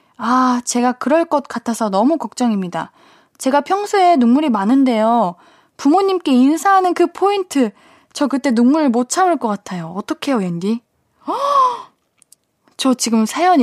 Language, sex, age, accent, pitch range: Korean, female, 20-39, native, 225-335 Hz